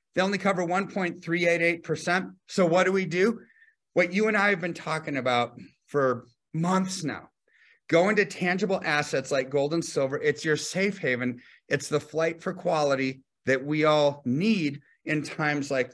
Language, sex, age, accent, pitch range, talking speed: English, male, 40-59, American, 145-190 Hz, 165 wpm